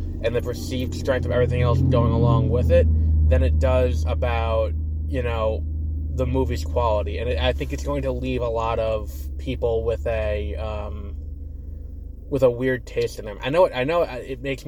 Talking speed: 200 wpm